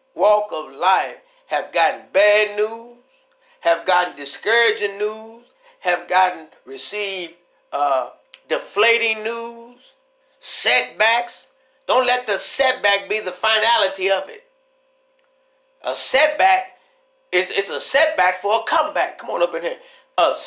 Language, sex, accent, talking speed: English, male, American, 125 wpm